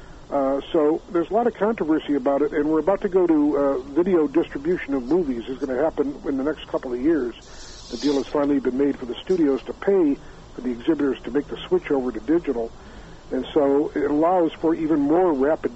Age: 60-79